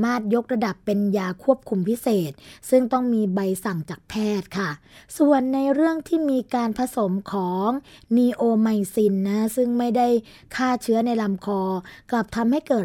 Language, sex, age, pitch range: Thai, female, 20-39, 190-235 Hz